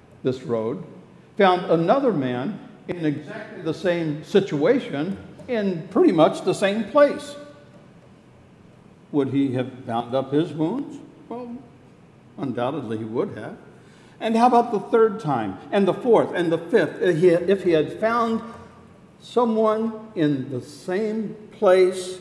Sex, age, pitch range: male, 60-79, 145-210 Hz